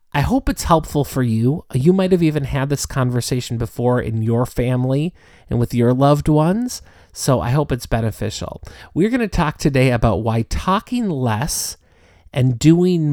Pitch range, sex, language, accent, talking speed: 115-155 Hz, male, English, American, 175 wpm